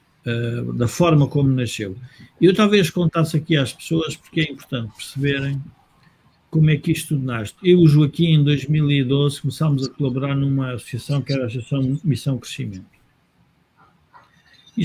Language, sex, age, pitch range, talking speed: Portuguese, male, 50-69, 135-170 Hz, 160 wpm